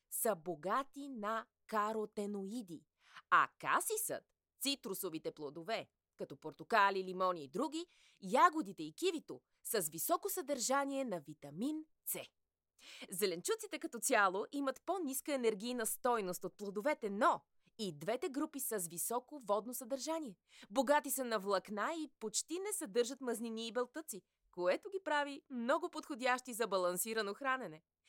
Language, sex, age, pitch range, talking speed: Bulgarian, female, 20-39, 185-280 Hz, 130 wpm